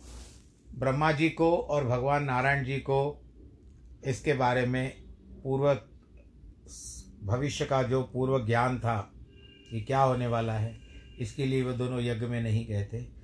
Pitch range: 105-140 Hz